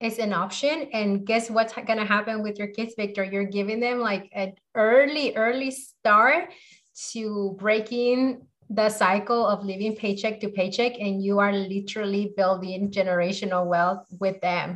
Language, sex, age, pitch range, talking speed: English, female, 30-49, 195-230 Hz, 155 wpm